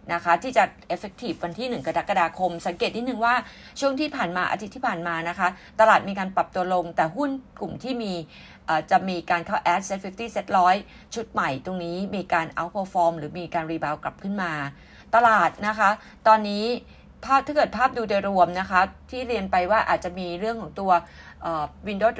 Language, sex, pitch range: Thai, female, 175-225 Hz